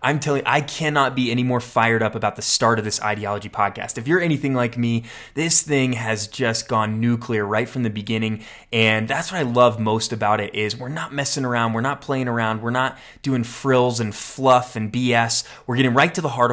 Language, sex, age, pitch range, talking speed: English, male, 20-39, 110-135 Hz, 230 wpm